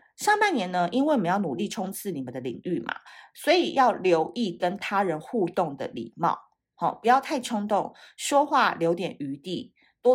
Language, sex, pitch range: Chinese, female, 170-235 Hz